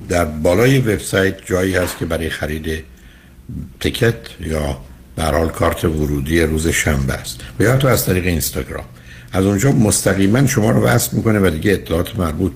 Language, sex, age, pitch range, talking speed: Persian, male, 60-79, 70-95 Hz, 155 wpm